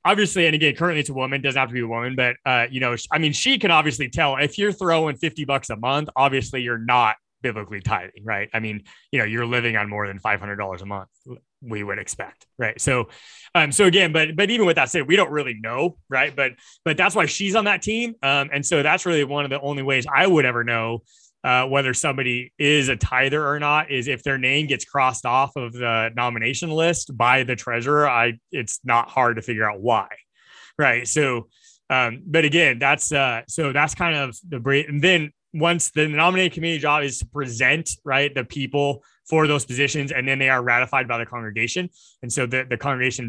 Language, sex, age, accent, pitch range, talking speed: English, male, 20-39, American, 120-150 Hz, 225 wpm